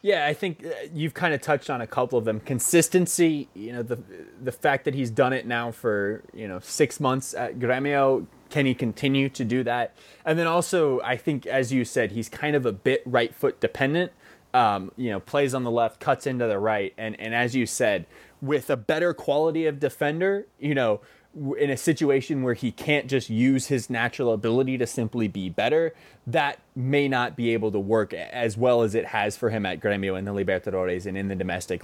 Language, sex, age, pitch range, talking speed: English, male, 20-39, 115-150 Hz, 215 wpm